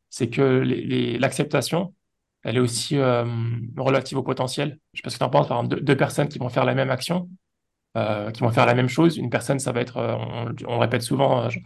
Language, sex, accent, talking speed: French, male, French, 250 wpm